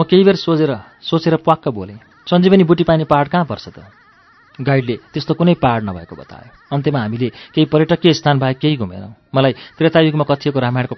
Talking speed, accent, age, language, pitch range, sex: 180 wpm, Indian, 40-59, English, 115-155 Hz, male